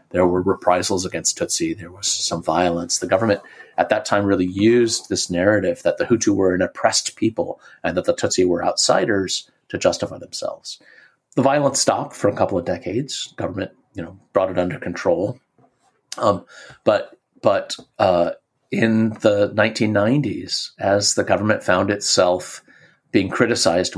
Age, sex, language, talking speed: 30-49, male, English, 160 wpm